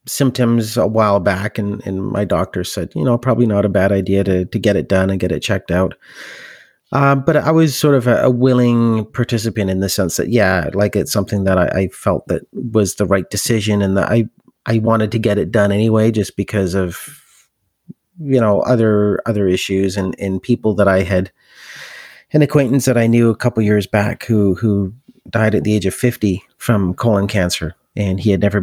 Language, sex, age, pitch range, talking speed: English, male, 30-49, 95-120 Hz, 210 wpm